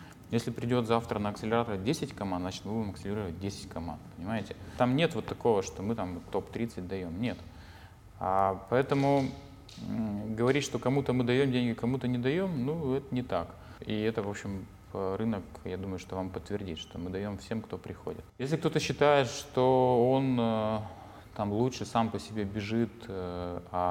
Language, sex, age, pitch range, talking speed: Russian, male, 20-39, 90-115 Hz, 165 wpm